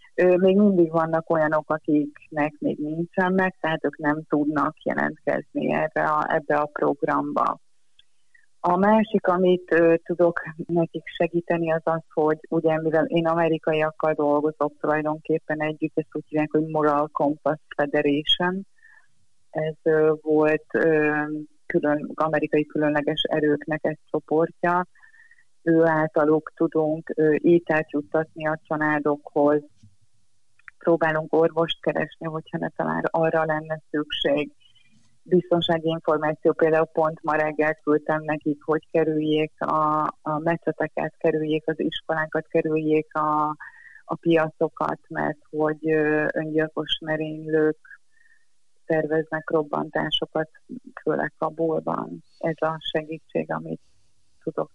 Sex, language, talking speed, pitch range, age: female, Hungarian, 115 wpm, 150-165 Hz, 30-49